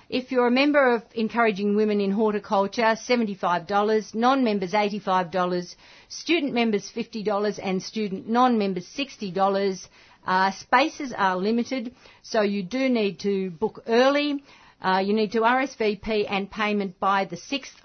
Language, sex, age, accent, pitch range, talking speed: English, female, 50-69, Australian, 190-245 Hz, 135 wpm